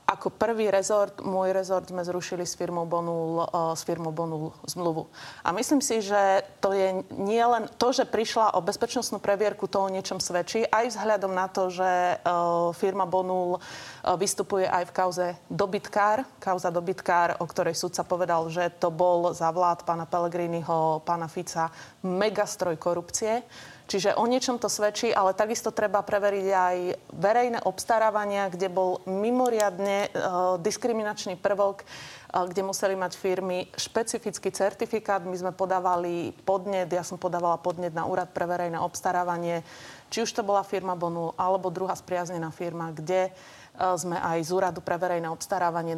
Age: 30-49